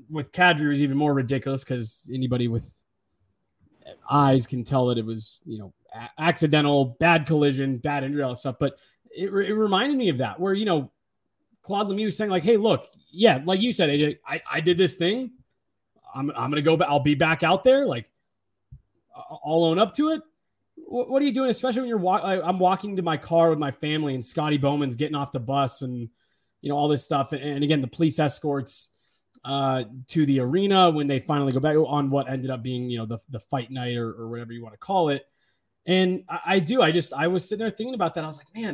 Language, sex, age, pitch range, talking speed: English, male, 30-49, 135-200 Hz, 235 wpm